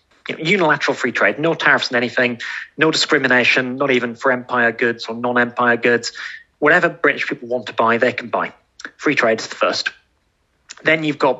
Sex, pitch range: male, 120-145 Hz